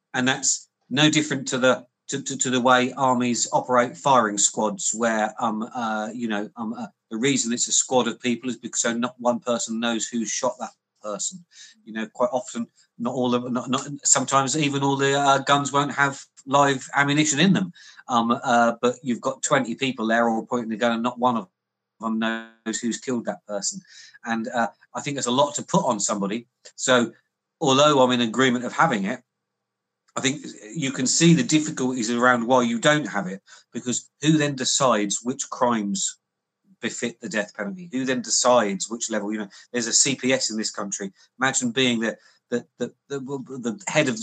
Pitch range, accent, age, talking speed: 115-135 Hz, British, 40-59, 200 wpm